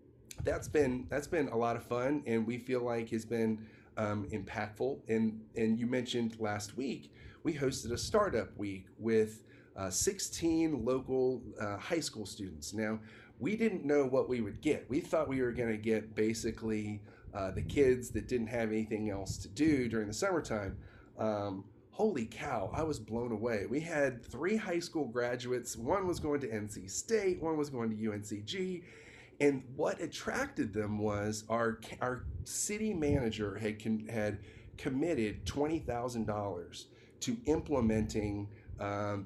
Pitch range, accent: 105-125 Hz, American